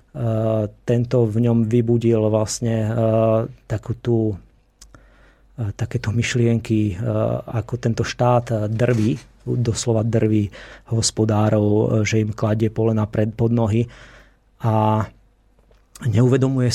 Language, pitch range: Czech, 110-120 Hz